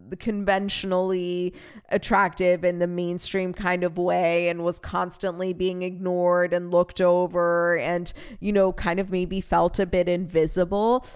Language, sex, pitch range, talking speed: English, female, 175-215 Hz, 145 wpm